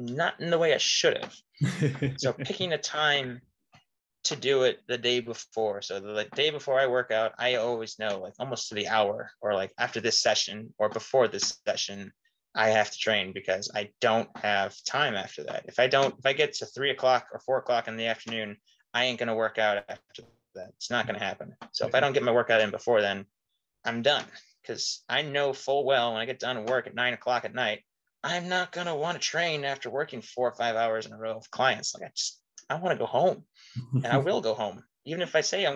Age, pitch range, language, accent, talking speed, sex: 20-39, 110-150 Hz, English, American, 240 wpm, male